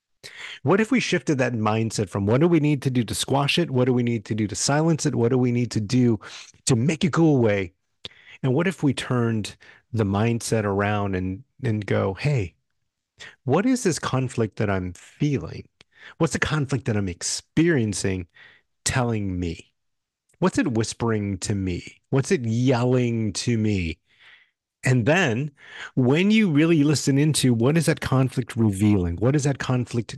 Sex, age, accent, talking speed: male, 40-59, American, 175 wpm